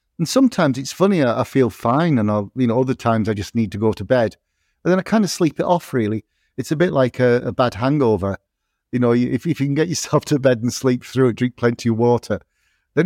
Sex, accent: male, British